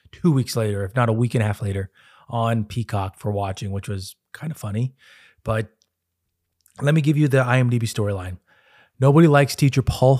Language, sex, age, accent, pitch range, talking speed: English, male, 20-39, American, 105-130 Hz, 190 wpm